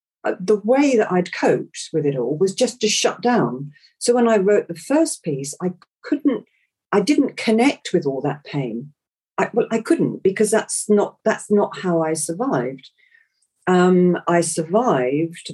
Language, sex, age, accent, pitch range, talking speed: English, female, 40-59, British, 145-195 Hz, 165 wpm